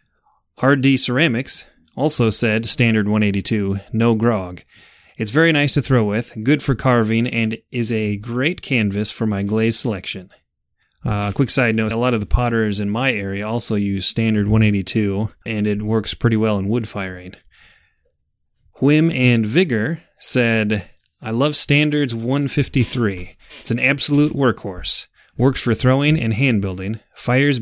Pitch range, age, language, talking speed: 105-130 Hz, 30-49, English, 150 wpm